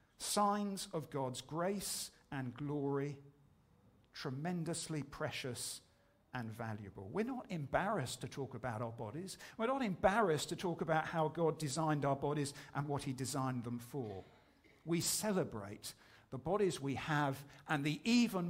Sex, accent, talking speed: male, British, 145 wpm